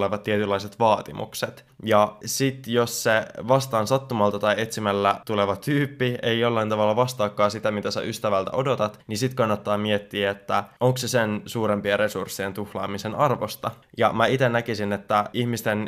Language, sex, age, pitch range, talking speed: Finnish, male, 20-39, 100-120 Hz, 145 wpm